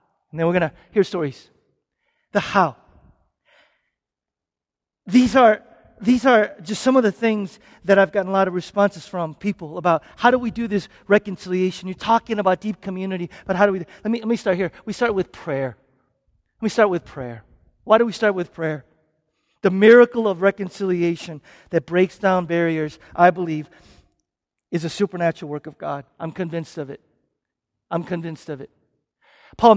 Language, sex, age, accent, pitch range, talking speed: English, male, 40-59, American, 160-205 Hz, 180 wpm